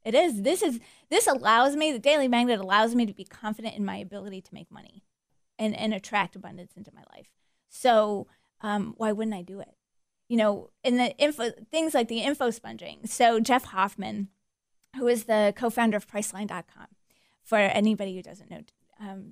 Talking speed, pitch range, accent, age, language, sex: 185 wpm, 210-250 Hz, American, 30-49, English, female